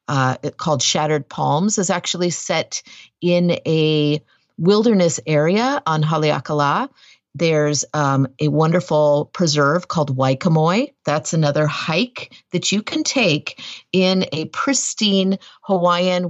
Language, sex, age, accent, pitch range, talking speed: English, female, 40-59, American, 145-180 Hz, 115 wpm